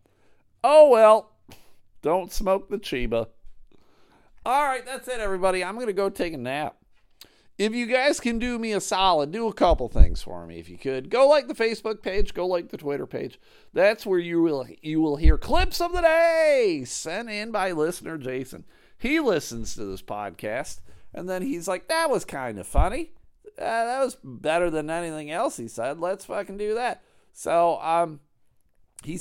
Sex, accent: male, American